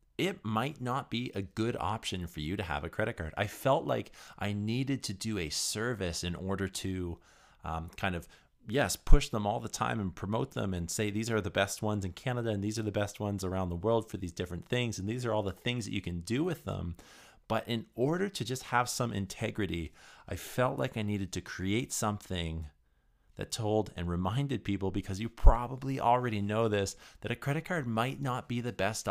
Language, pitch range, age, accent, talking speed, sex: English, 90-115 Hz, 30-49, American, 225 wpm, male